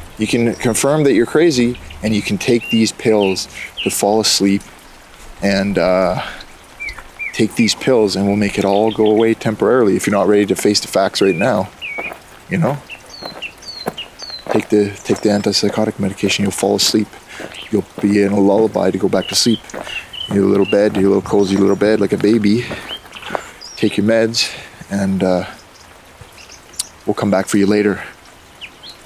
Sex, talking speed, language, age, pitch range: male, 170 wpm, English, 20-39, 100-125 Hz